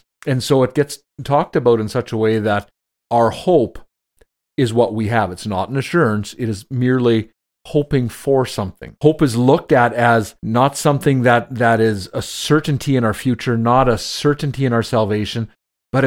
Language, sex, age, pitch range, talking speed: English, male, 40-59, 105-135 Hz, 185 wpm